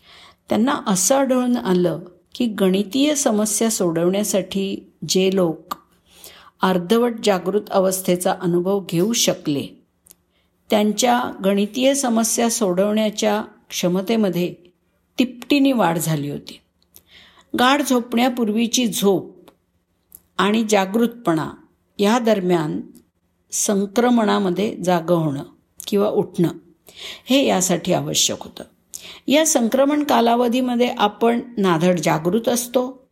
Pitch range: 175-230 Hz